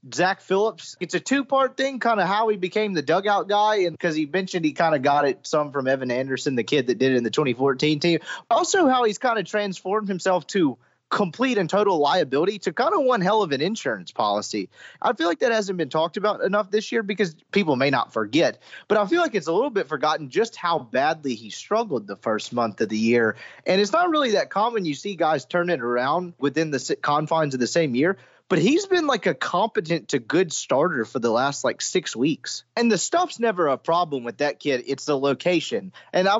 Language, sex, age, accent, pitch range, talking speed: English, male, 30-49, American, 150-220 Hz, 235 wpm